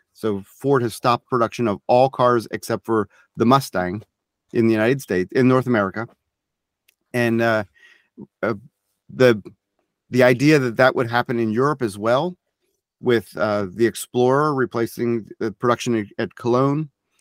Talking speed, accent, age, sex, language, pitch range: 145 wpm, American, 30-49, male, English, 110-135 Hz